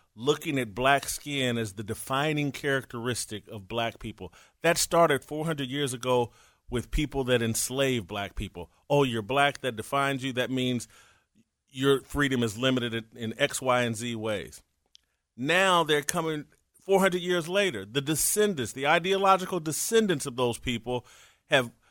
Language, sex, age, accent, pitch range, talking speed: English, male, 40-59, American, 120-160 Hz, 150 wpm